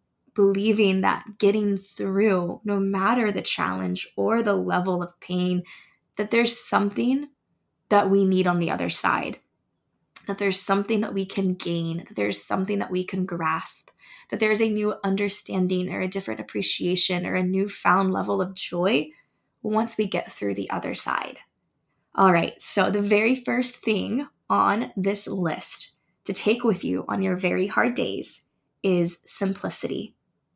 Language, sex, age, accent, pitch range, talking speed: English, female, 10-29, American, 180-205 Hz, 155 wpm